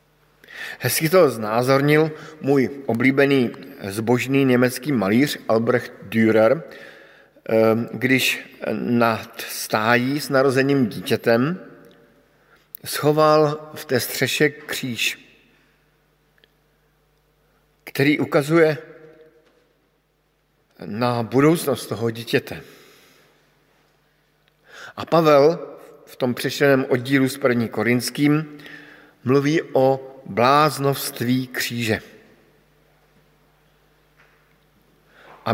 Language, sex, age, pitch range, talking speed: Slovak, male, 50-69, 125-150 Hz, 70 wpm